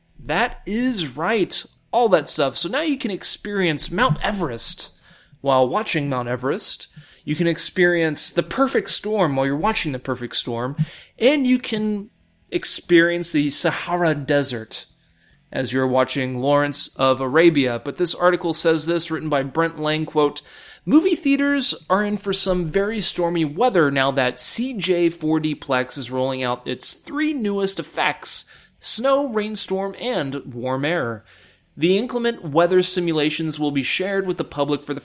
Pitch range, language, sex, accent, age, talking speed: 135-195 Hz, English, male, American, 20-39, 150 wpm